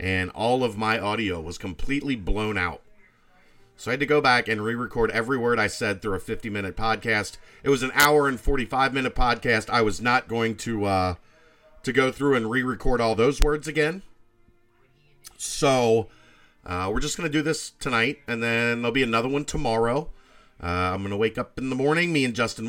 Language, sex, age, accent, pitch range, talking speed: English, male, 40-59, American, 110-145 Hz, 200 wpm